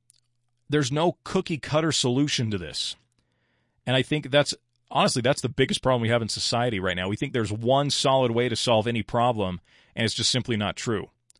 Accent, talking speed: American, 195 wpm